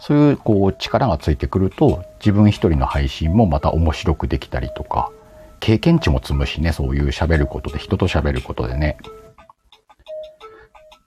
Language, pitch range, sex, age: Japanese, 75-125 Hz, male, 50-69